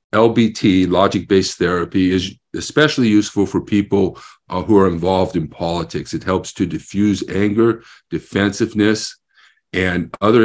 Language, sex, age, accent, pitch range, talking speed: English, male, 50-69, American, 90-110 Hz, 125 wpm